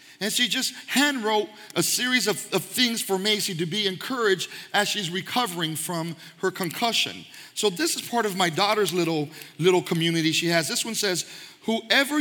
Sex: male